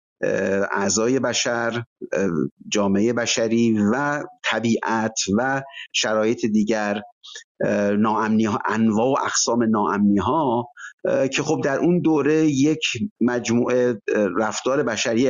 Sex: male